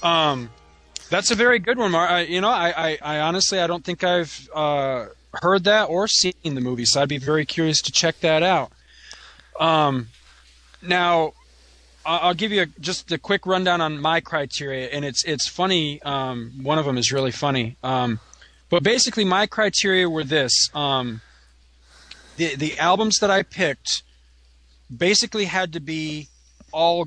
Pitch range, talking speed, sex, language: 135-180 Hz, 170 wpm, male, English